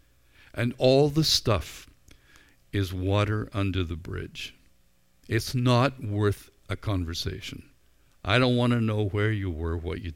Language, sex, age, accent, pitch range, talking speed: English, male, 50-69, American, 75-105 Hz, 140 wpm